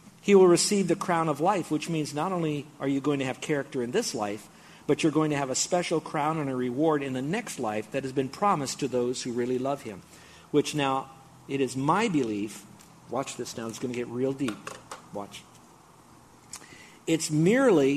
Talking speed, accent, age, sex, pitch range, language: 210 wpm, American, 50-69, male, 145-185 Hz, English